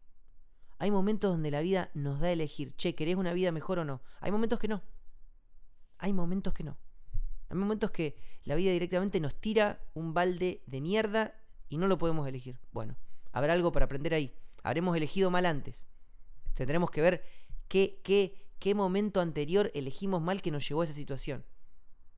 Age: 20-39